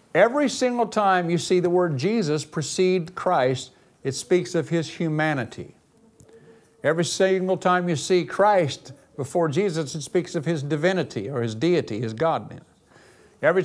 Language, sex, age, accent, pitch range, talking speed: English, male, 60-79, American, 150-195 Hz, 150 wpm